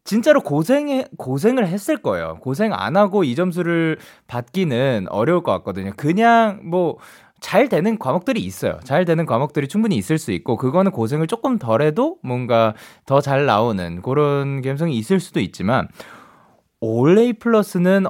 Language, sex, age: Korean, male, 20-39